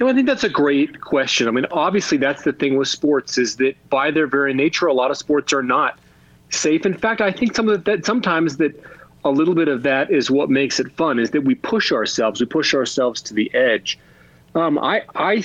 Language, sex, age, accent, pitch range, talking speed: English, male, 40-59, American, 115-145 Hz, 245 wpm